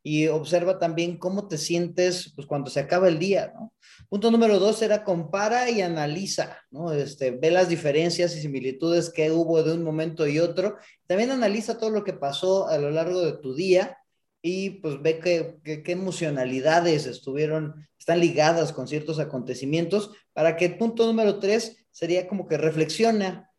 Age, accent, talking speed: 30-49, Mexican, 170 wpm